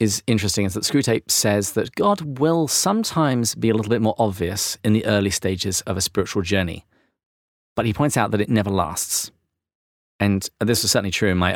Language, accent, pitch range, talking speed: English, British, 90-115 Hz, 200 wpm